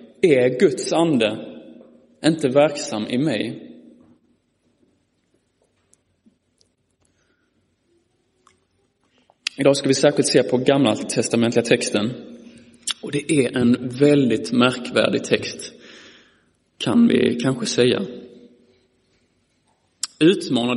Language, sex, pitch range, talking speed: Swedish, male, 120-160 Hz, 80 wpm